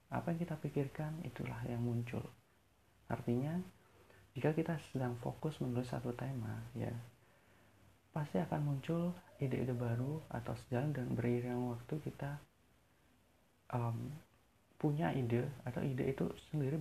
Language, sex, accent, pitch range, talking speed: Indonesian, male, native, 115-140 Hz, 125 wpm